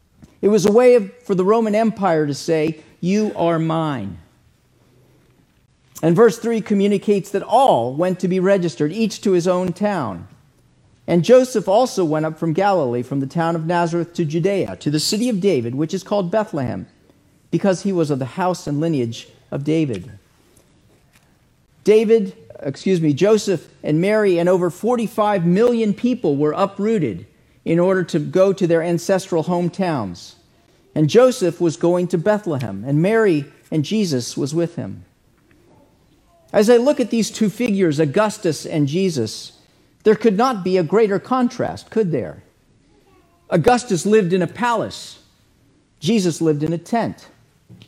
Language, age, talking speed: English, 40-59, 155 wpm